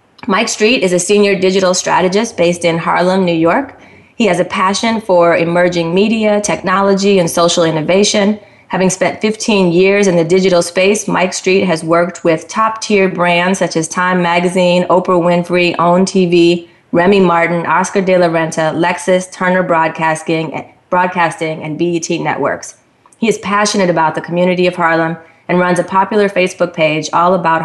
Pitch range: 165-190 Hz